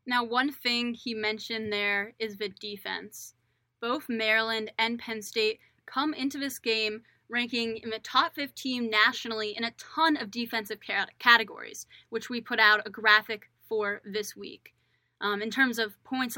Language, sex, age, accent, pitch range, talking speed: English, female, 20-39, American, 215-245 Hz, 160 wpm